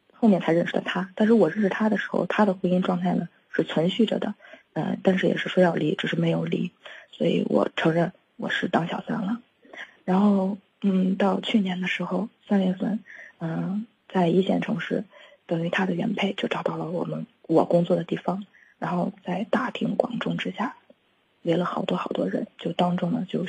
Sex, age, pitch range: female, 20-39, 180-215 Hz